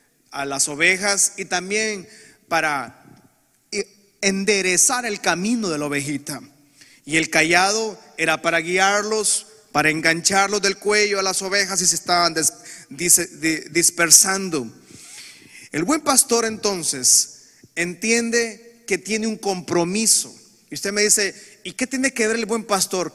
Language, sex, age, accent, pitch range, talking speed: Spanish, male, 30-49, Mexican, 175-225 Hz, 135 wpm